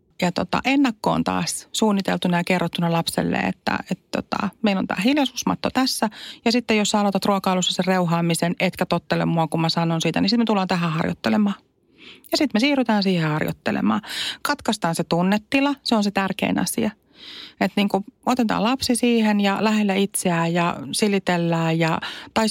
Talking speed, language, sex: 165 wpm, Finnish, female